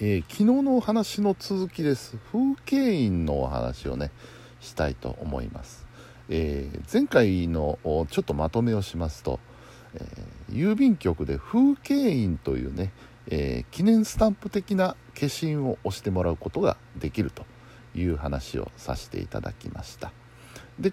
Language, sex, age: Japanese, male, 60-79